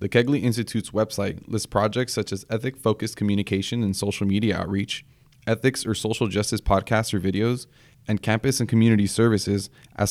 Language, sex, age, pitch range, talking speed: English, male, 20-39, 100-125 Hz, 160 wpm